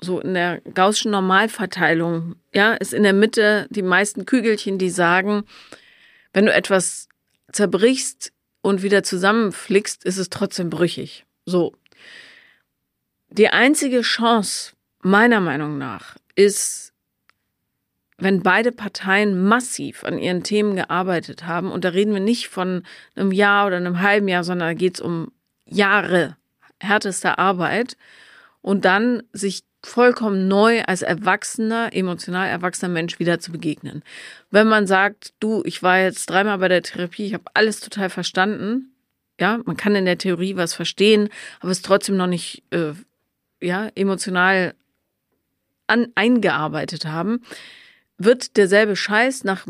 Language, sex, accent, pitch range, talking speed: German, female, German, 180-210 Hz, 140 wpm